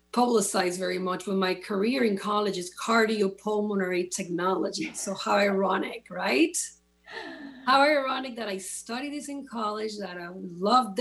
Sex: female